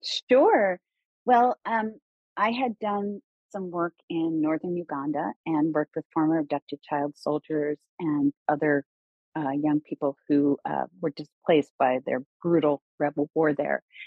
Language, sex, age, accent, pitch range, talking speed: English, female, 40-59, American, 145-175 Hz, 140 wpm